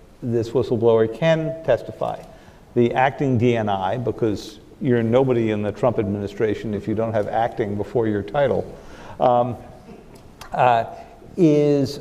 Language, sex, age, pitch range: English, male, 50-69, 110-135 Hz